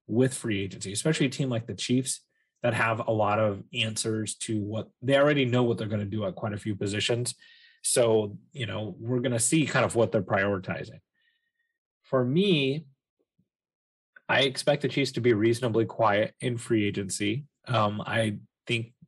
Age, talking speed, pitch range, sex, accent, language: 30-49, 175 wpm, 105-135 Hz, male, American, English